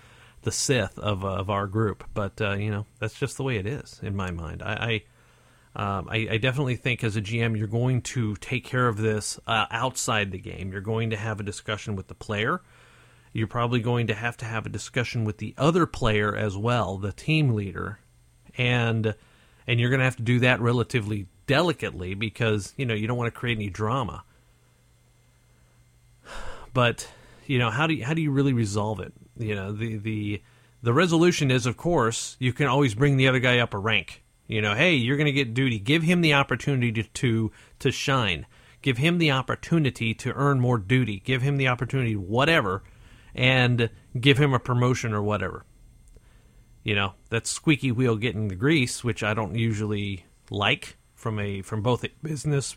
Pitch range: 105-130 Hz